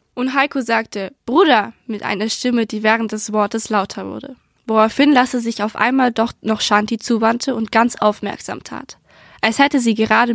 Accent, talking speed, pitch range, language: German, 175 wpm, 215-255 Hz, German